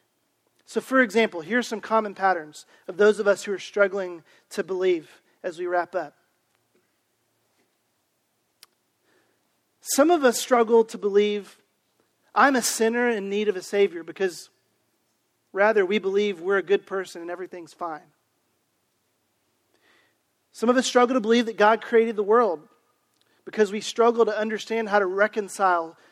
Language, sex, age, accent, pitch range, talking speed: English, male, 40-59, American, 185-235 Hz, 145 wpm